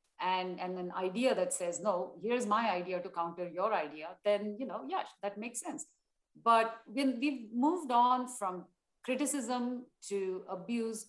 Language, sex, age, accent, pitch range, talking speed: English, female, 50-69, Indian, 180-225 Hz, 155 wpm